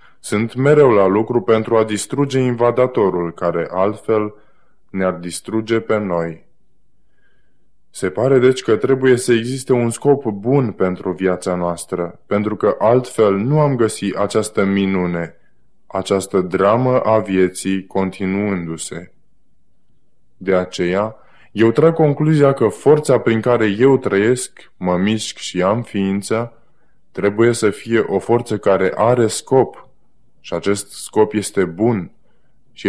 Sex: male